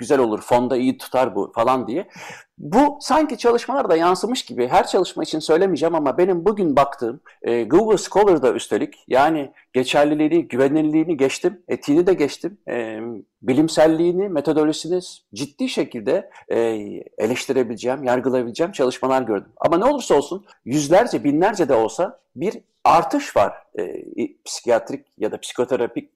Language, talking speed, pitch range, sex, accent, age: Turkish, 135 wpm, 140-210 Hz, male, native, 60-79